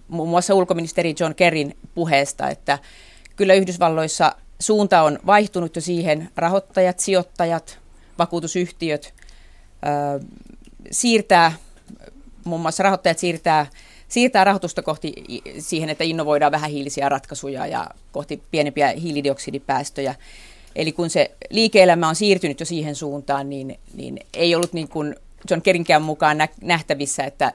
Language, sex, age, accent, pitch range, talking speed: Finnish, female, 30-49, native, 145-180 Hz, 120 wpm